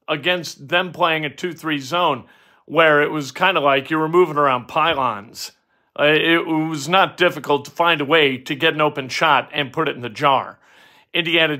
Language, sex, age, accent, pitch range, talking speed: English, male, 50-69, American, 145-175 Hz, 195 wpm